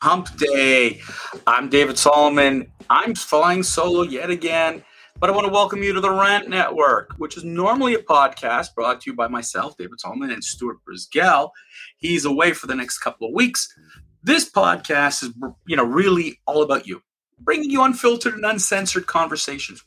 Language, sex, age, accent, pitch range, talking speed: English, male, 30-49, American, 150-230 Hz, 175 wpm